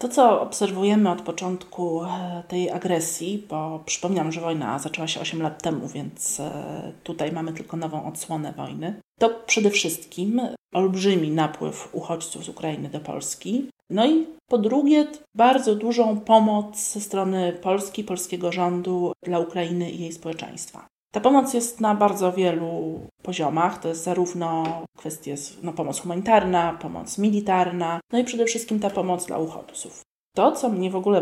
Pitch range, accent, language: 165-215 Hz, native, Polish